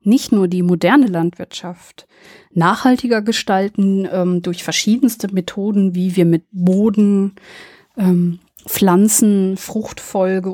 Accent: German